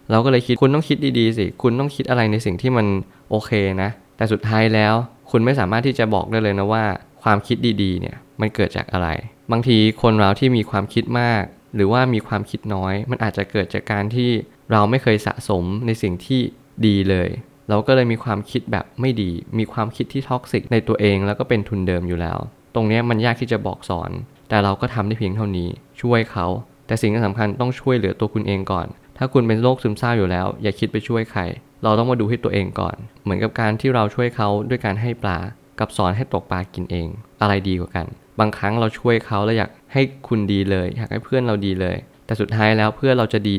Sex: male